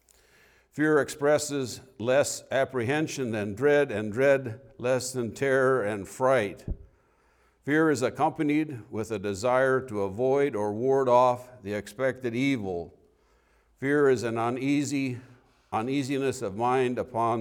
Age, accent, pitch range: 60-79, American, 100-130 Hz